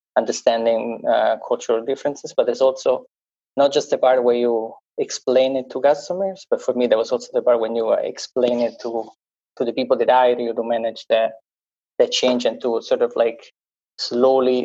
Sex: male